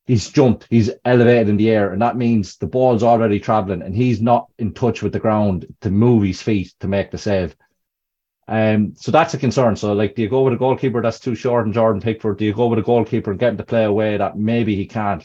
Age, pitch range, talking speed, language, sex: 30-49, 95-120 Hz, 255 wpm, English, male